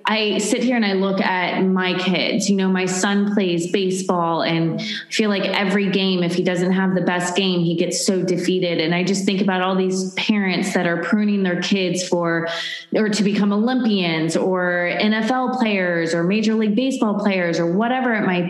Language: English